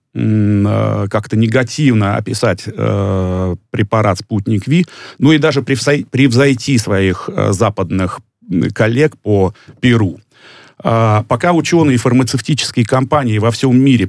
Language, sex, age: Russian, male, 30-49